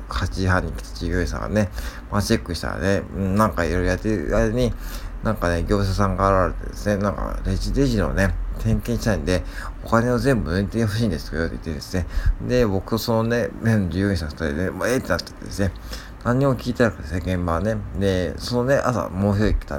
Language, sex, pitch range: Japanese, male, 85-110 Hz